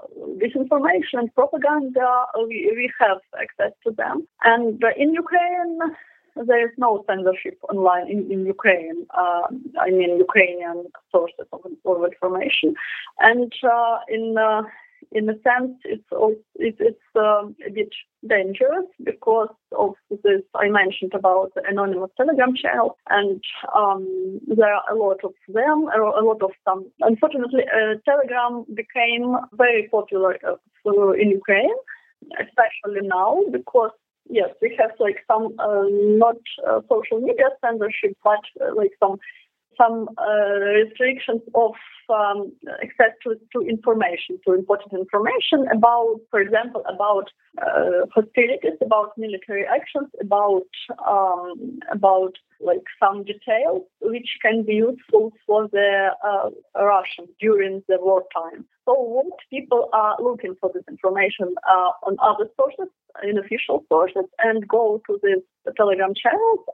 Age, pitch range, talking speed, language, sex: 20-39, 200-265 Hz, 135 wpm, English, female